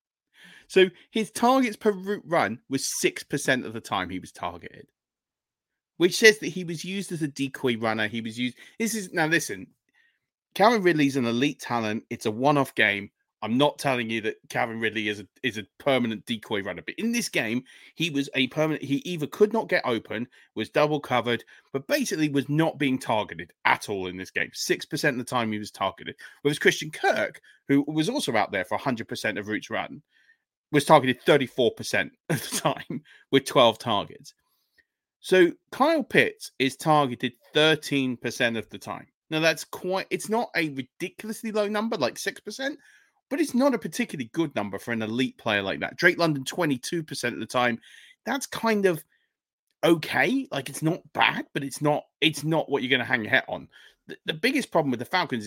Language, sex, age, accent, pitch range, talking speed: English, male, 30-49, British, 125-195 Hz, 195 wpm